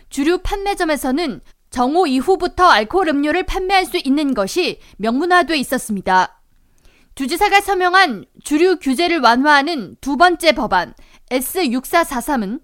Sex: female